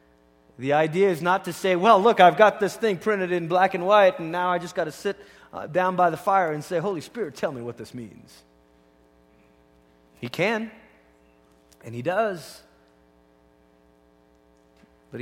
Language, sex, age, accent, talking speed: English, male, 30-49, American, 175 wpm